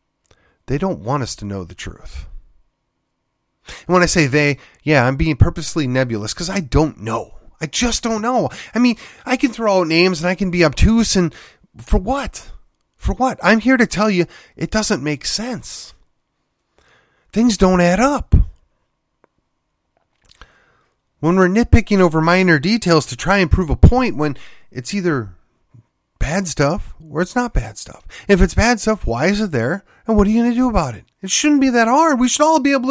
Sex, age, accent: male, 30-49, American